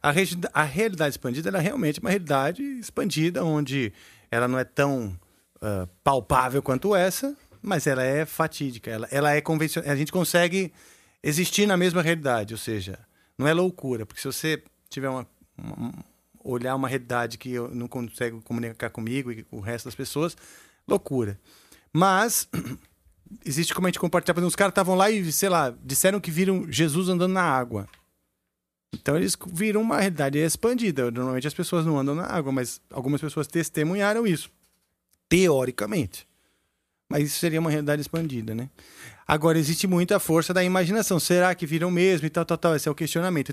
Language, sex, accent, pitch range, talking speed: Portuguese, male, Brazilian, 125-175 Hz, 170 wpm